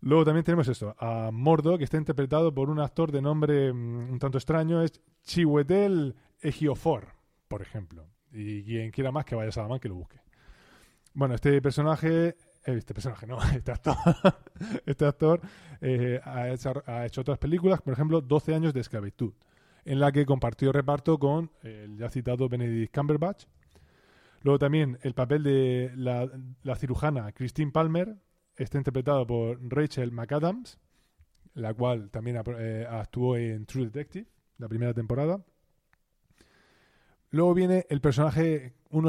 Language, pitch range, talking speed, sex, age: Spanish, 120-160 Hz, 150 wpm, male, 20-39